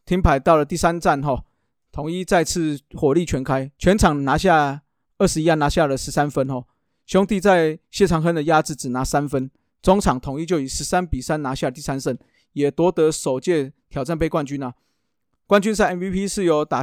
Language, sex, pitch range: Chinese, male, 135-170 Hz